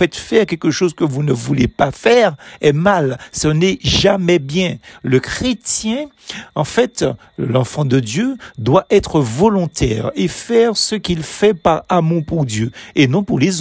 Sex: male